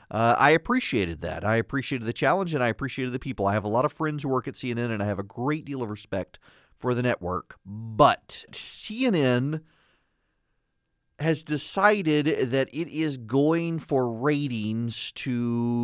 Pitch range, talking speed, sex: 110-150 Hz, 170 wpm, male